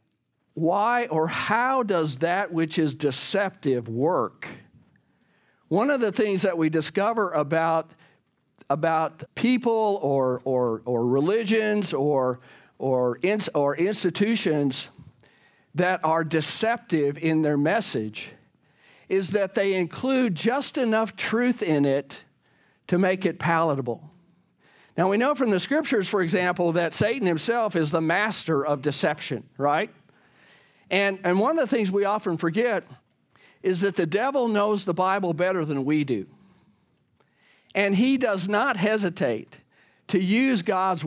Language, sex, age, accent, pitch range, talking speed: English, male, 50-69, American, 155-205 Hz, 135 wpm